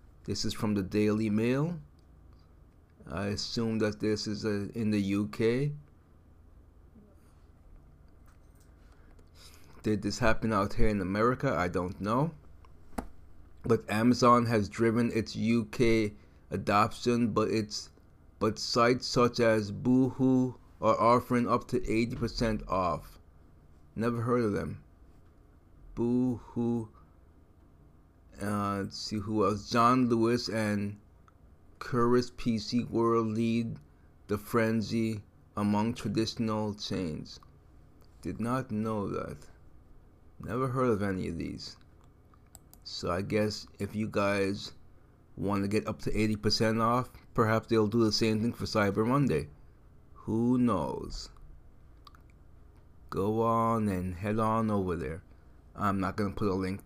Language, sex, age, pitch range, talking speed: English, male, 30-49, 85-115 Hz, 120 wpm